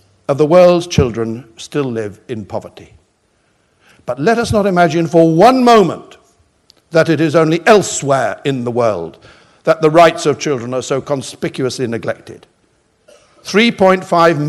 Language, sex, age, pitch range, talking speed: English, male, 60-79, 130-170 Hz, 140 wpm